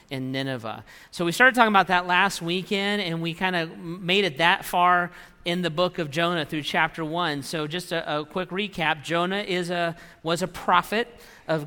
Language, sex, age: English, male, 40-59